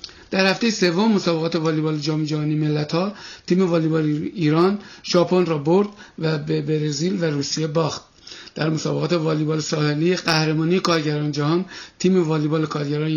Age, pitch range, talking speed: 50-69, 160-185 Hz, 135 wpm